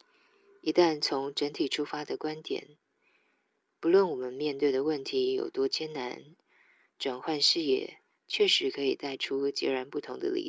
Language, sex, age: Chinese, female, 20-39